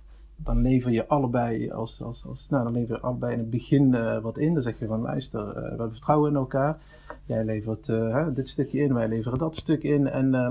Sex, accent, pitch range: male, Dutch, 115-140 Hz